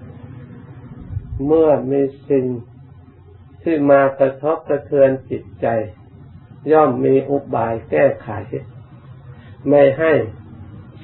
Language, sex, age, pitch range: Thai, male, 60-79, 115-135 Hz